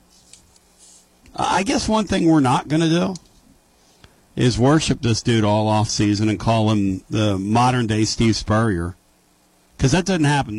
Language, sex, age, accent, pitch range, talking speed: English, male, 50-69, American, 80-125 Hz, 160 wpm